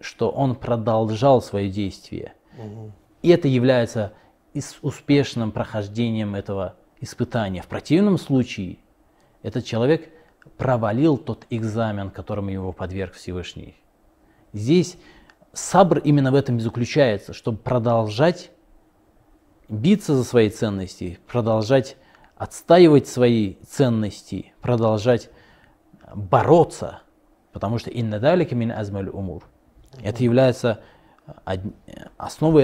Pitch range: 105-130 Hz